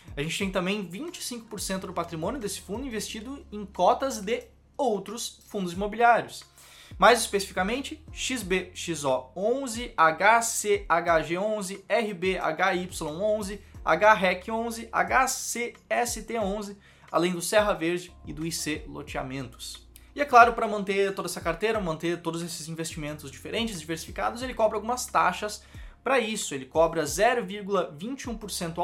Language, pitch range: Portuguese, 180-240 Hz